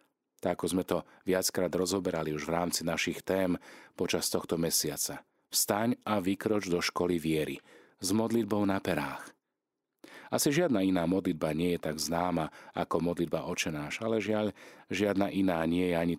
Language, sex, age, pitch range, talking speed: Slovak, male, 40-59, 80-100 Hz, 150 wpm